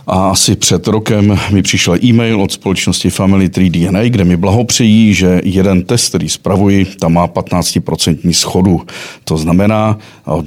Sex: male